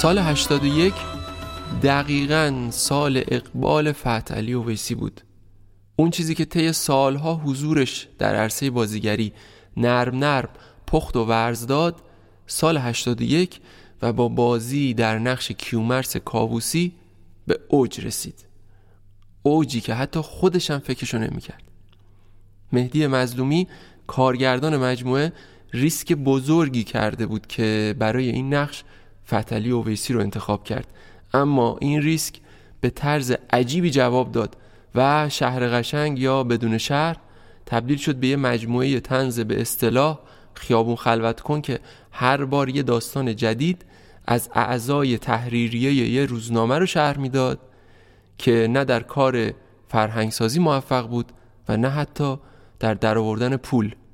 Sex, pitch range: male, 110-140 Hz